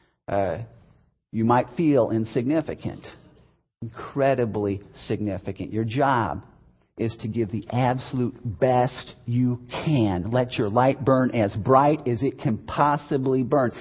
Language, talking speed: English, 120 wpm